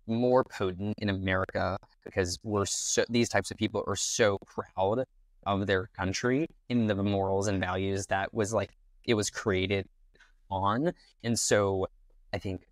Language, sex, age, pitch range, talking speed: English, male, 20-39, 95-115 Hz, 155 wpm